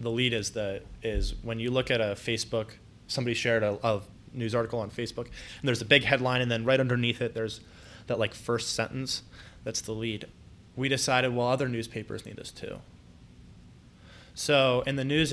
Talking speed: 190 wpm